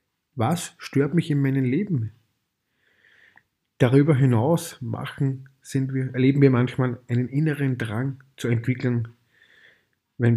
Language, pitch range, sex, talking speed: German, 120-145 Hz, male, 115 wpm